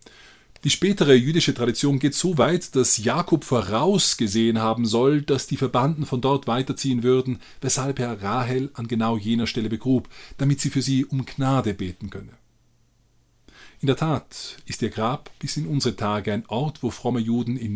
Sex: male